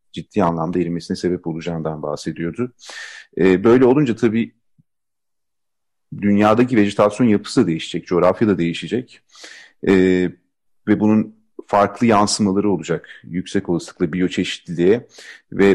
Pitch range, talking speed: 90-110 Hz, 105 wpm